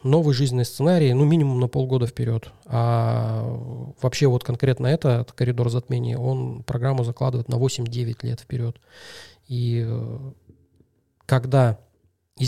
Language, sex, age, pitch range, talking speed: Russian, male, 20-39, 120-135 Hz, 125 wpm